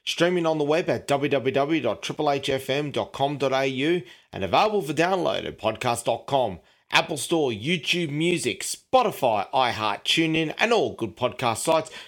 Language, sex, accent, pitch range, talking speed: English, male, Australian, 135-165 Hz, 120 wpm